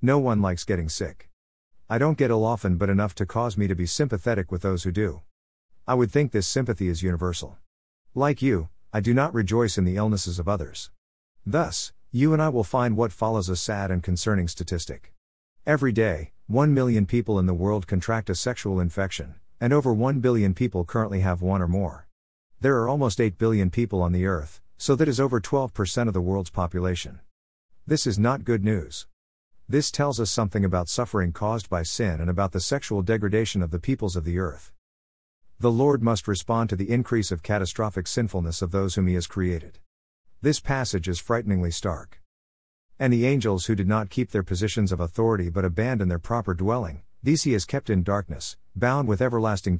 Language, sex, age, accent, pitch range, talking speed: English, male, 50-69, American, 90-115 Hz, 200 wpm